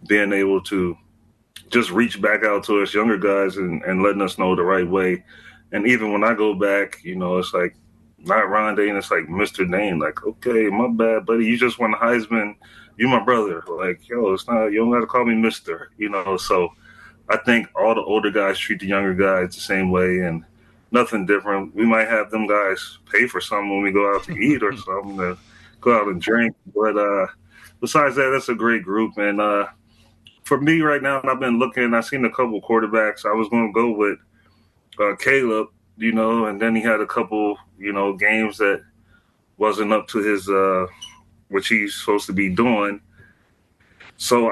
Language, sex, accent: English, male, American